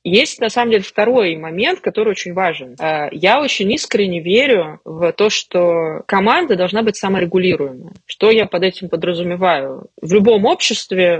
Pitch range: 170-210 Hz